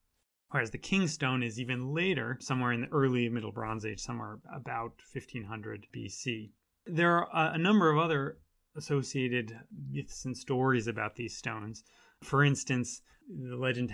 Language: English